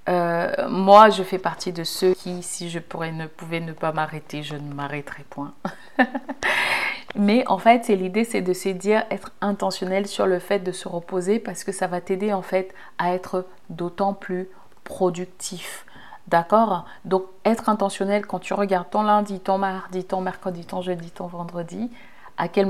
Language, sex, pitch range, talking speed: French, female, 175-200 Hz, 180 wpm